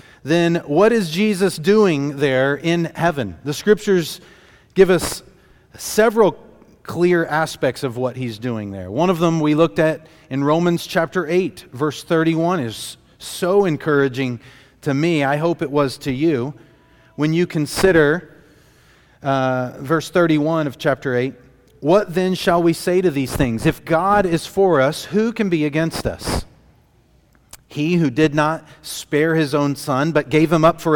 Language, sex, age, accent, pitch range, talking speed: English, male, 40-59, American, 140-185 Hz, 160 wpm